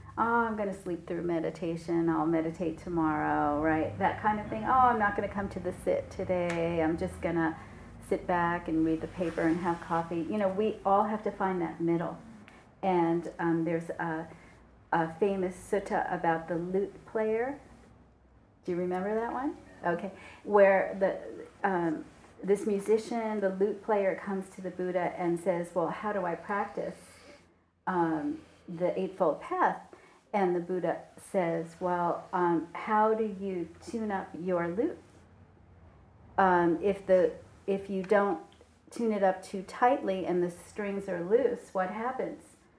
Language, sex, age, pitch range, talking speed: English, female, 40-59, 170-200 Hz, 160 wpm